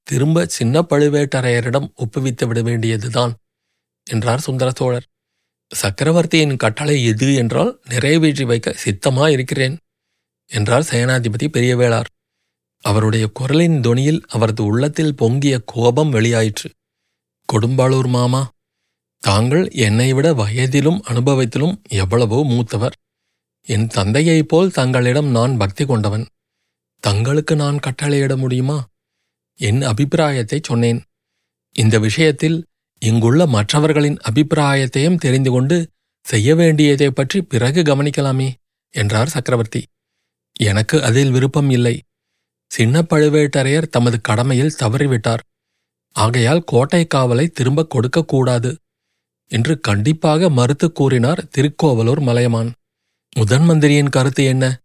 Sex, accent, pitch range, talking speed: male, native, 115-150 Hz, 95 wpm